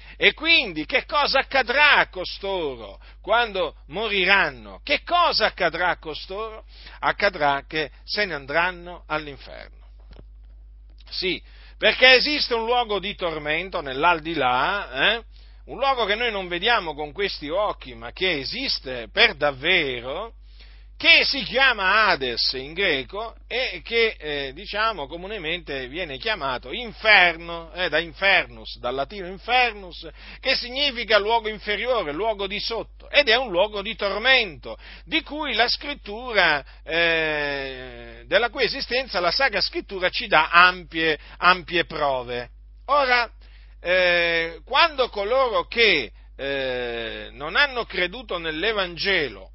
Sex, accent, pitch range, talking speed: male, native, 150-235 Hz, 120 wpm